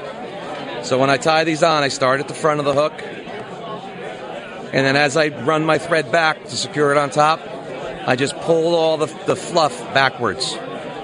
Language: English